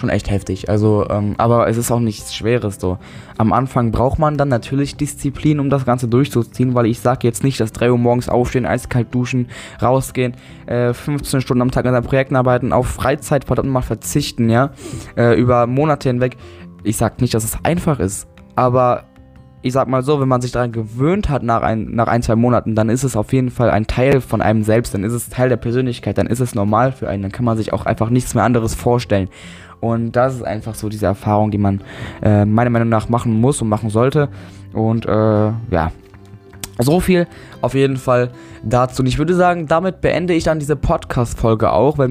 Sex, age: male, 10-29